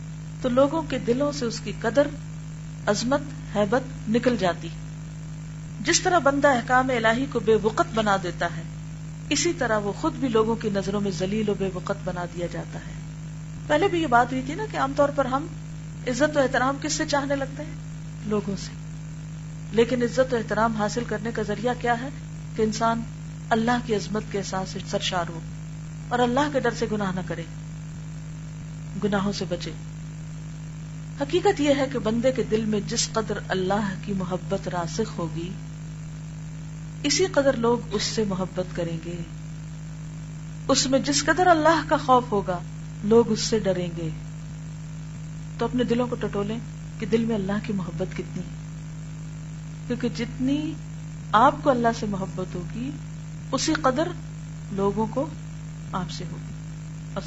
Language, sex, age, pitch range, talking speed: Urdu, female, 40-59, 155-220 Hz, 160 wpm